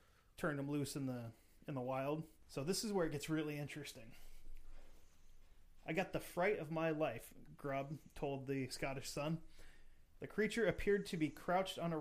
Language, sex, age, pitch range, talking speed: English, male, 30-49, 140-165 Hz, 180 wpm